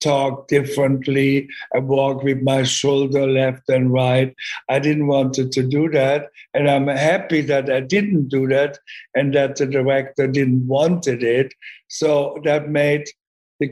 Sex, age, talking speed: male, 60-79, 155 wpm